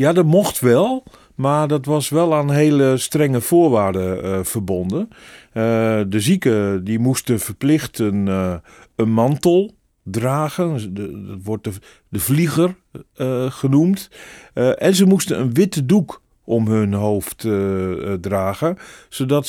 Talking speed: 135 wpm